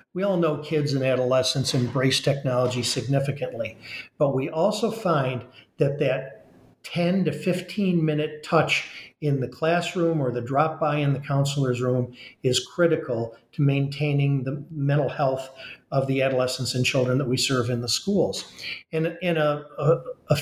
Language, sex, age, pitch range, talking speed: English, male, 50-69, 130-165 Hz, 150 wpm